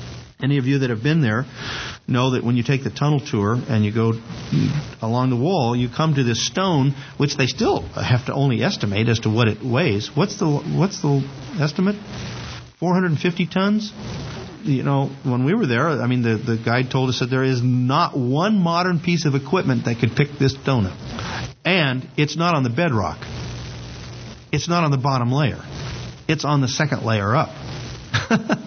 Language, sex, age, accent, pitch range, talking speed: English, male, 50-69, American, 120-150 Hz, 190 wpm